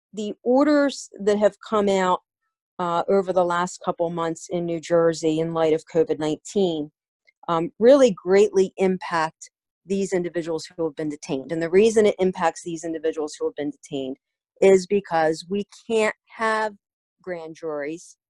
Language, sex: English, female